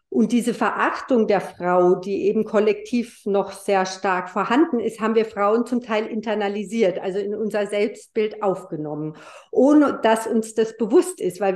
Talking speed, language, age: 160 wpm, German, 50-69